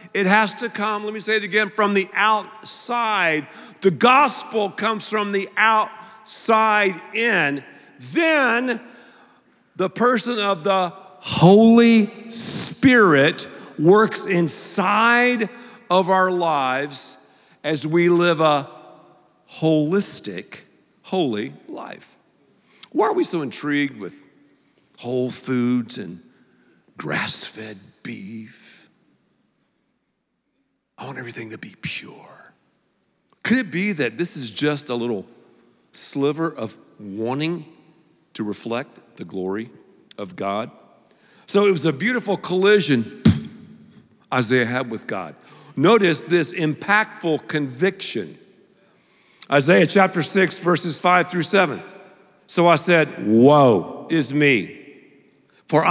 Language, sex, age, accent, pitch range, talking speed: English, male, 50-69, American, 155-215 Hz, 110 wpm